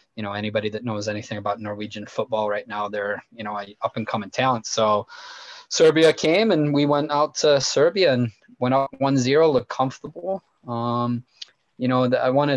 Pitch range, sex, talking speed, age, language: 110-125 Hz, male, 185 wpm, 20-39, English